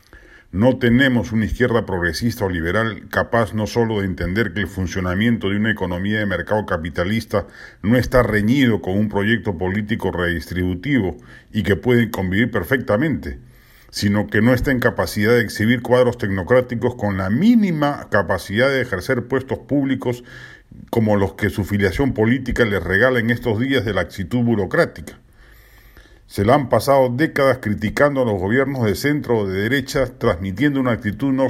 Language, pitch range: Spanish, 105-130 Hz